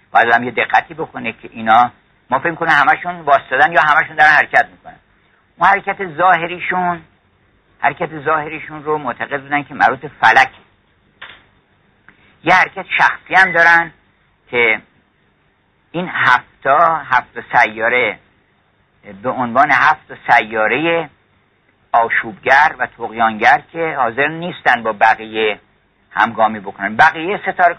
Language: Persian